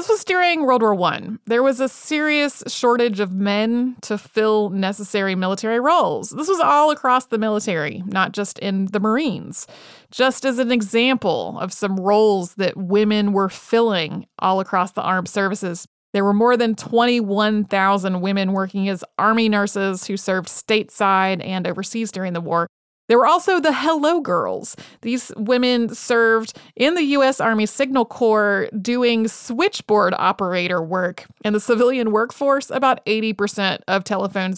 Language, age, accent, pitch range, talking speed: English, 30-49, American, 195-245 Hz, 155 wpm